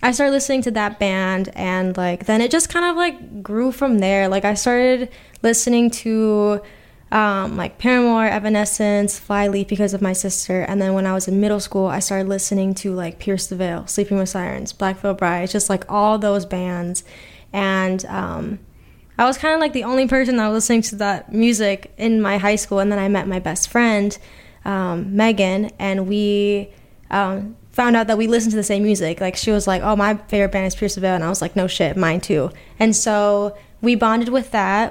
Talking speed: 210 wpm